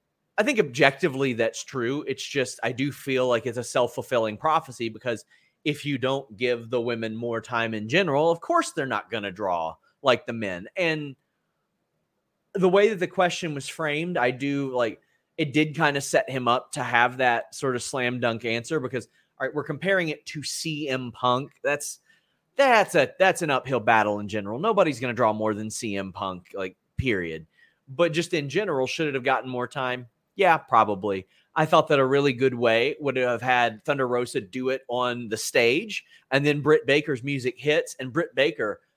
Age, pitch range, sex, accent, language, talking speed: 30-49, 125-160 Hz, male, American, English, 195 wpm